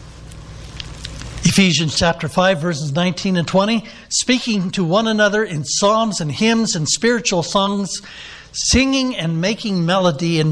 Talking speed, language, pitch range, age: 130 wpm, English, 145-195 Hz, 60-79